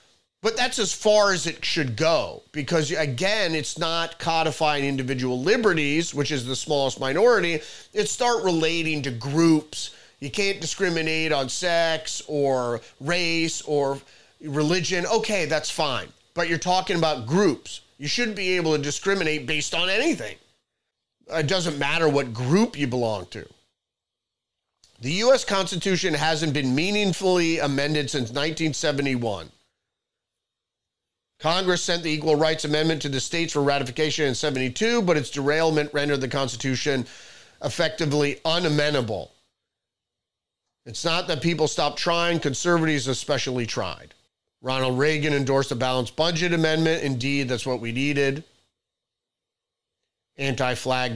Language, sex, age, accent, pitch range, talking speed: English, male, 30-49, American, 135-165 Hz, 130 wpm